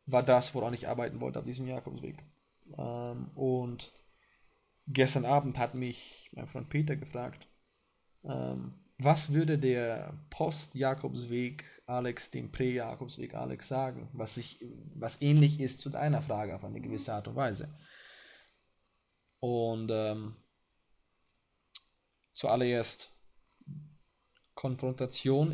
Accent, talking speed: German, 105 wpm